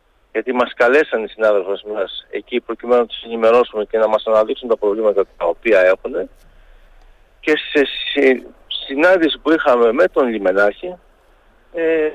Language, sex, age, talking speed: Greek, male, 50-69, 145 wpm